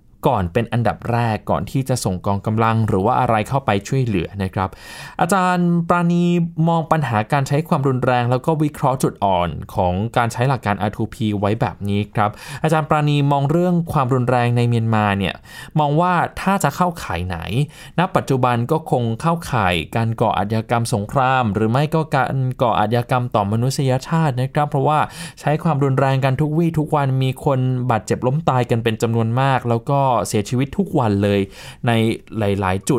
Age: 20-39